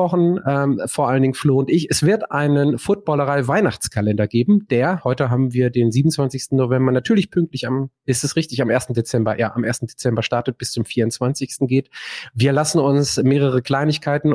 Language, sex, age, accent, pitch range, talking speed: German, male, 30-49, German, 115-145 Hz, 170 wpm